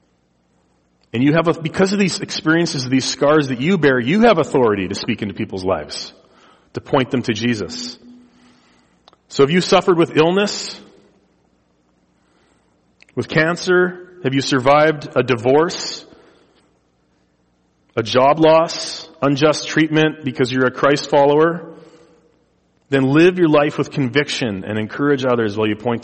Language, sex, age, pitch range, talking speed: English, male, 40-59, 115-155 Hz, 145 wpm